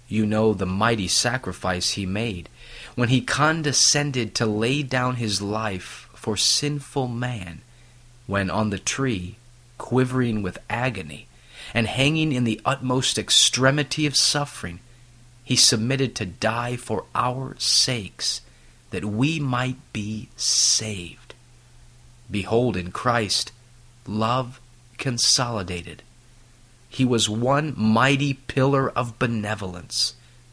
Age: 30-49